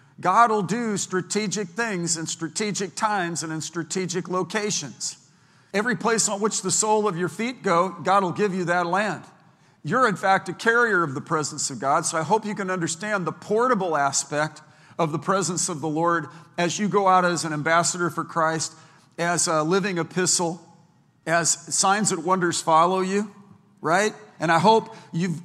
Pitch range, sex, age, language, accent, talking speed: 165-205 Hz, male, 50-69, English, American, 180 wpm